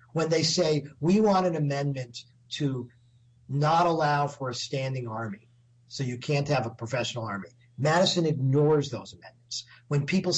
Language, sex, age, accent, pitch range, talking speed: English, male, 50-69, American, 125-170 Hz, 155 wpm